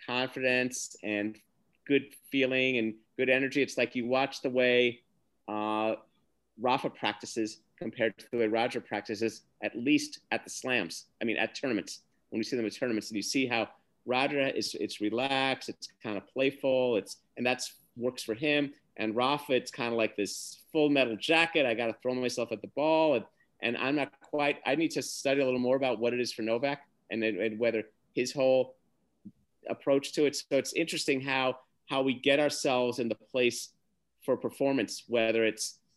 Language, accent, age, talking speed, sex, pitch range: English, American, 40-59, 190 wpm, male, 115-145 Hz